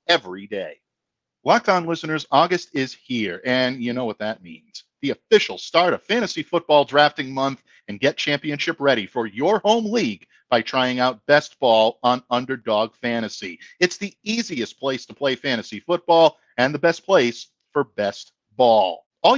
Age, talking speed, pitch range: 50-69, 165 wpm, 130-180 Hz